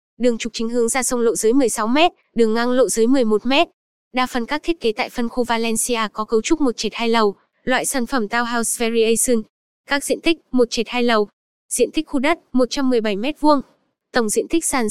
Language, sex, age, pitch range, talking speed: Vietnamese, female, 10-29, 230-275 Hz, 215 wpm